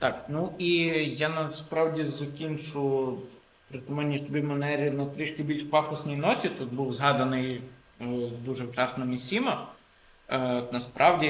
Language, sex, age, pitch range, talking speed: Ukrainian, male, 20-39, 125-155 Hz, 115 wpm